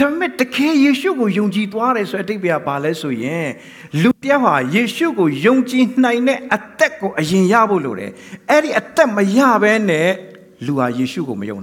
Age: 60-79